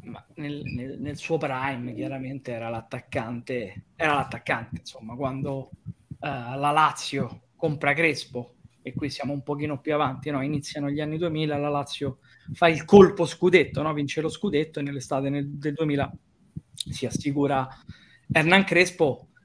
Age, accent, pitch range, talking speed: 20-39, native, 140-170 Hz, 150 wpm